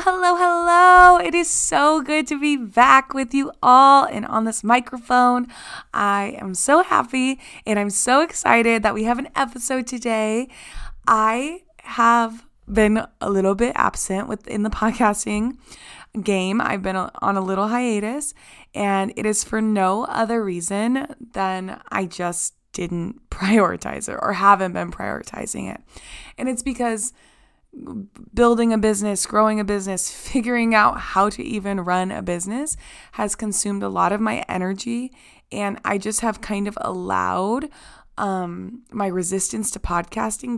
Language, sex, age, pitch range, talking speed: English, female, 20-39, 195-250 Hz, 150 wpm